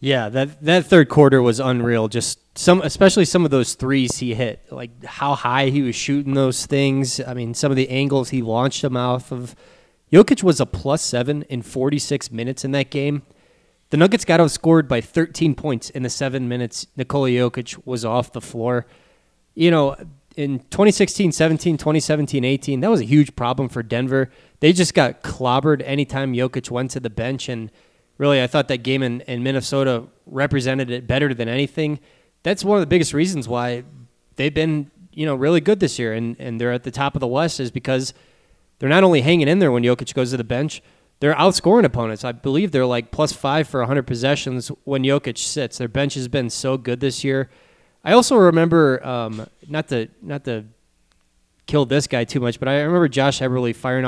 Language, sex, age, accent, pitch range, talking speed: English, male, 20-39, American, 125-150 Hz, 200 wpm